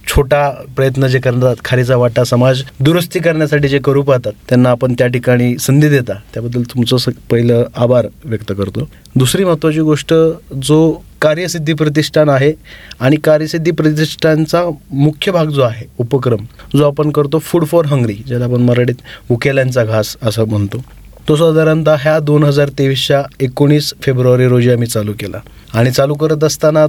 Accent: native